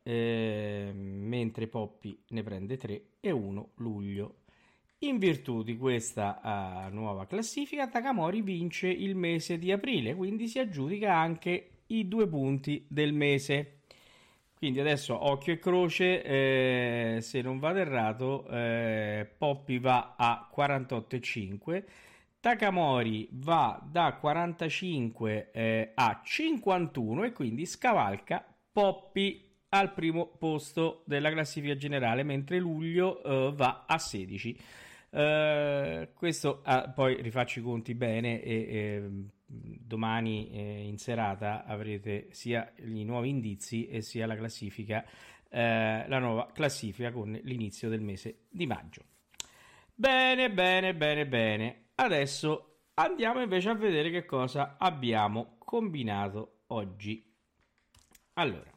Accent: native